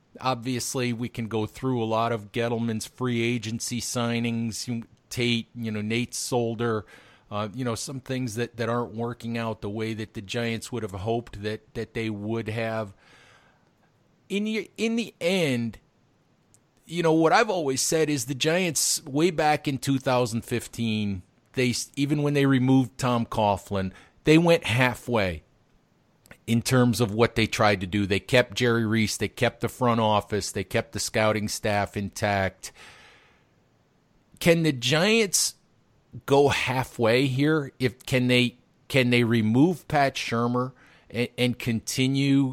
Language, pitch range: English, 110-130 Hz